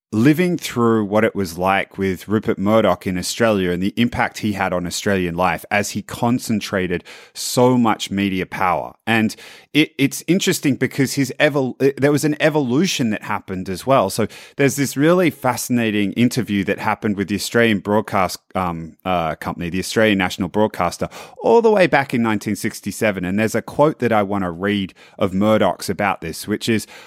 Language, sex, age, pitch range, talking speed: English, male, 30-49, 105-140 Hz, 180 wpm